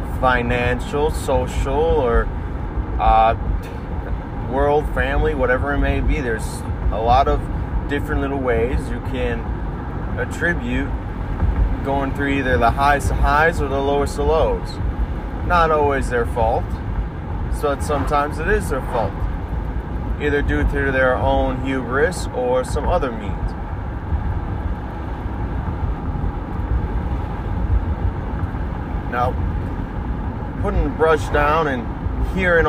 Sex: male